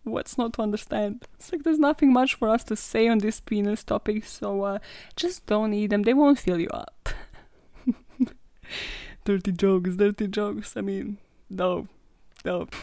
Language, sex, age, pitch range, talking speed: English, female, 20-39, 190-250 Hz, 170 wpm